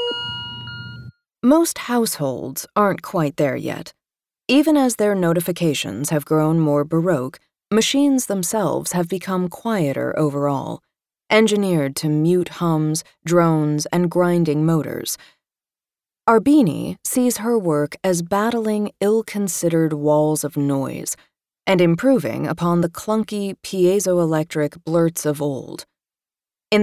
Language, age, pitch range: English, 30-49, 150-210 Hz